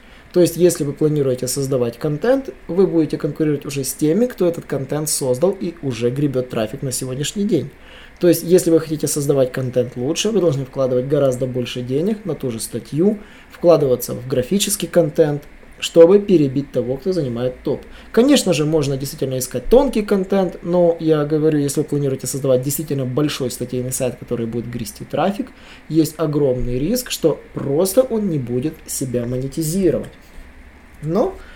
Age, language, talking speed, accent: 20-39, Russian, 160 wpm, native